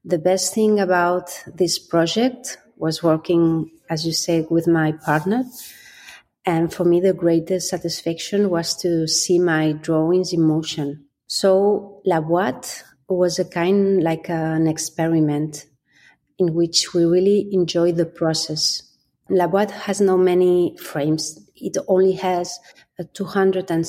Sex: female